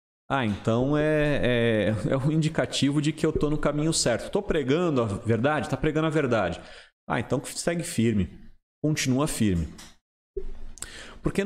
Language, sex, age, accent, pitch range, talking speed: Portuguese, male, 40-59, Brazilian, 115-175 Hz, 155 wpm